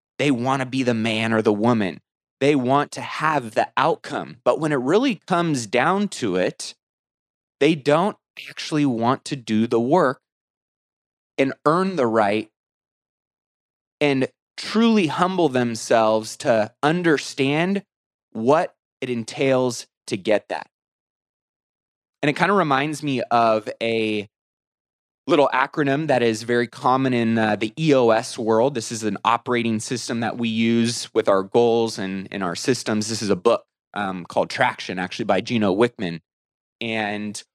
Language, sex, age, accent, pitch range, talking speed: English, male, 20-39, American, 110-150 Hz, 150 wpm